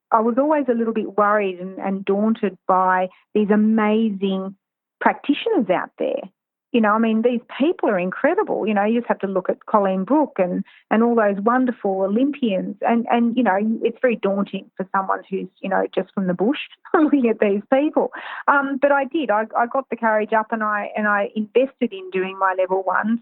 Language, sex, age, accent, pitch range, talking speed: English, female, 40-59, Australian, 195-235 Hz, 205 wpm